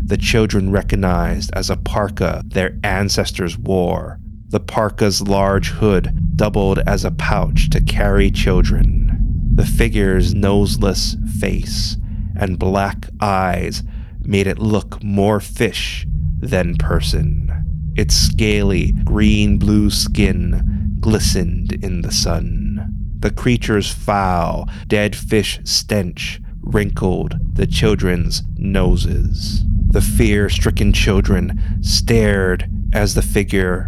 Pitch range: 90-105 Hz